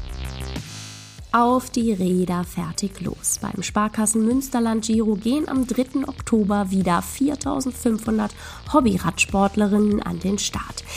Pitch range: 190-245 Hz